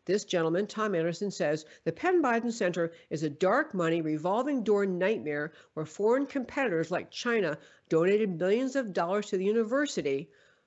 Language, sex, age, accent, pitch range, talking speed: English, female, 60-79, American, 170-220 Hz, 150 wpm